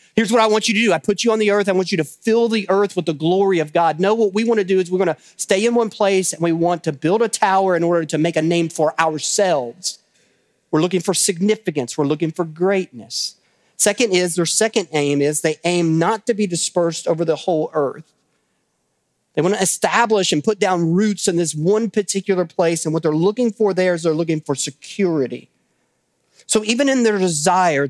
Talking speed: 230 wpm